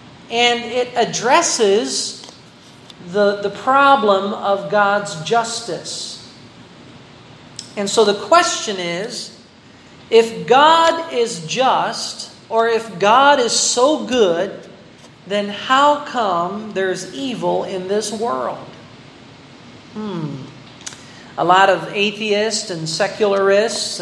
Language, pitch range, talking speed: Filipino, 185-225 Hz, 95 wpm